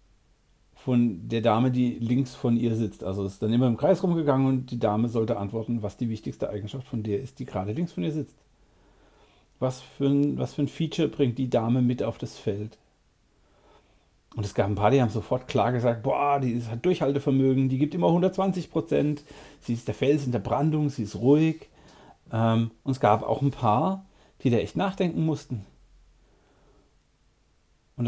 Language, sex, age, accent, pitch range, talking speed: German, male, 40-59, German, 115-145 Hz, 185 wpm